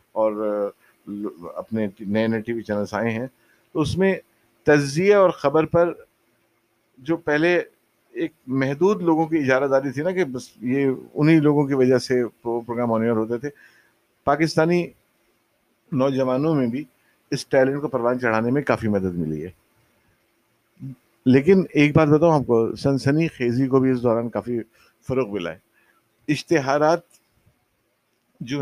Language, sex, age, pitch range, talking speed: Urdu, male, 50-69, 115-160 Hz, 145 wpm